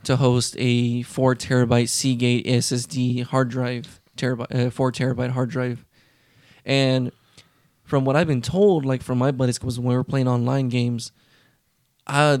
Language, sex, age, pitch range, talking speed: English, male, 20-39, 125-130 Hz, 145 wpm